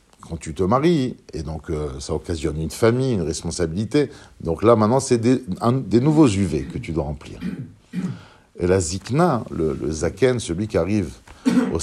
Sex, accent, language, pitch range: male, French, French, 95-130 Hz